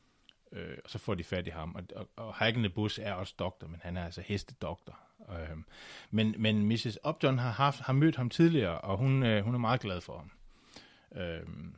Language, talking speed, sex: Danish, 210 wpm, male